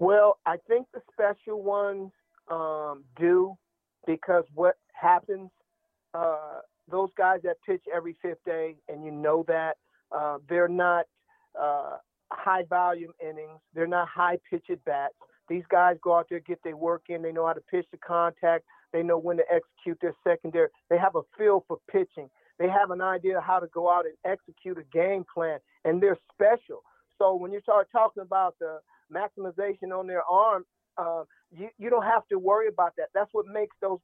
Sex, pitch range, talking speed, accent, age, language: male, 170-210 Hz, 180 wpm, American, 40-59, English